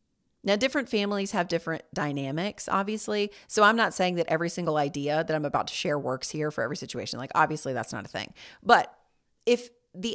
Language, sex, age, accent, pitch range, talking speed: English, female, 40-59, American, 170-235 Hz, 200 wpm